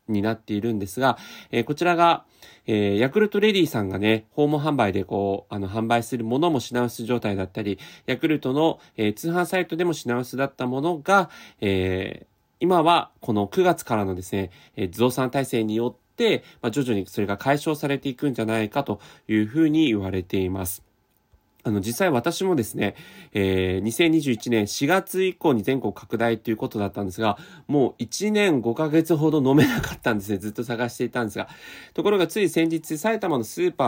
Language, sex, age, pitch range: Japanese, male, 30-49, 105-155 Hz